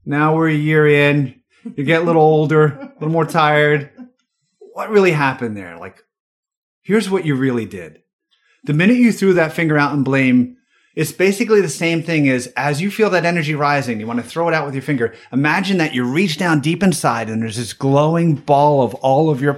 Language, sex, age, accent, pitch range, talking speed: English, male, 30-49, American, 140-185 Hz, 215 wpm